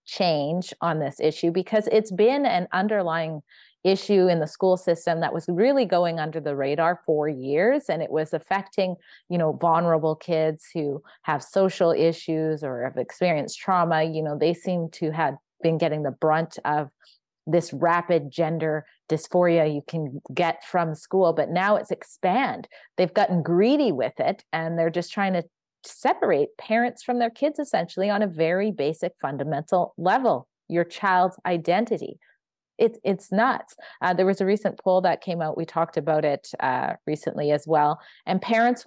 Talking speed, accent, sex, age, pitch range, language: 170 wpm, American, female, 30-49, 155-200 Hz, English